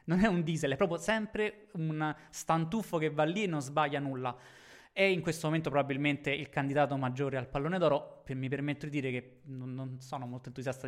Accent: native